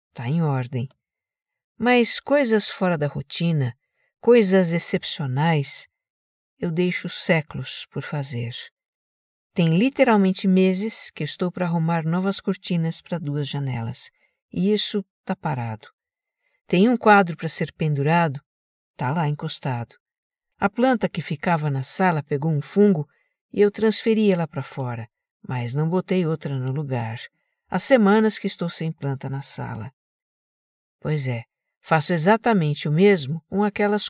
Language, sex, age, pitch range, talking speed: Portuguese, female, 50-69, 140-195 Hz, 135 wpm